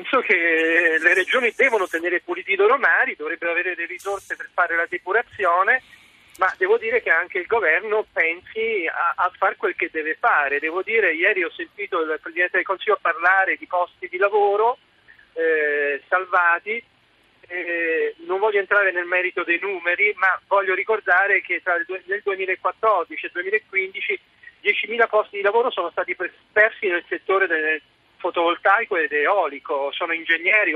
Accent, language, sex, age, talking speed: native, Italian, male, 40-59, 160 wpm